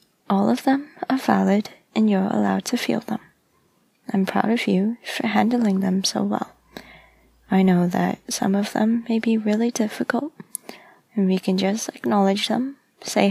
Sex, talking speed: female, 165 wpm